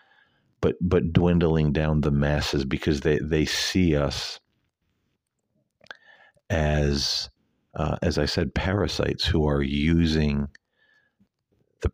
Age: 50-69